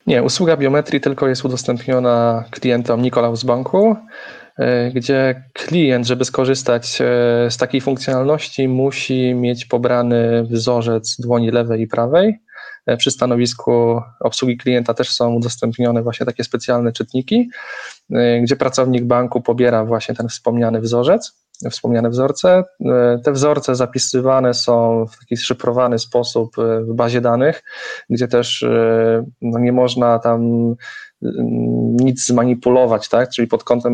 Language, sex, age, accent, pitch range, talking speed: Polish, male, 20-39, native, 115-130 Hz, 120 wpm